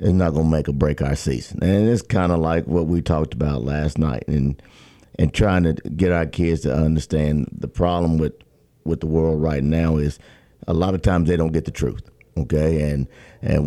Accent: American